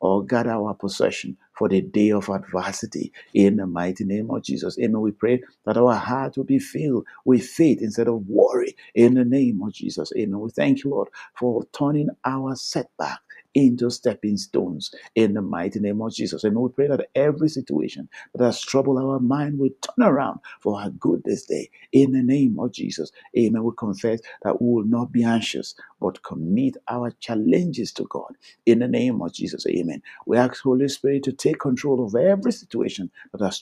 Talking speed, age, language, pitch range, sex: 195 wpm, 50-69, English, 115-135 Hz, male